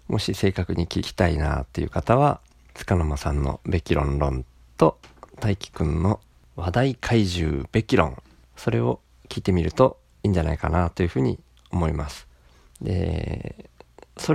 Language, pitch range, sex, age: Japanese, 75-110 Hz, male, 40-59